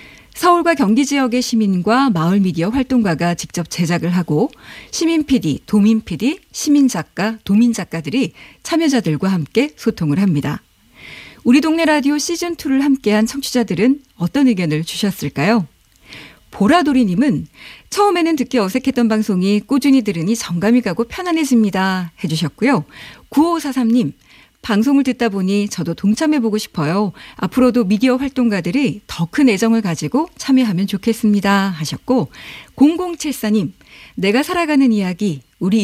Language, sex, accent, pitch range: Korean, female, native, 185-260 Hz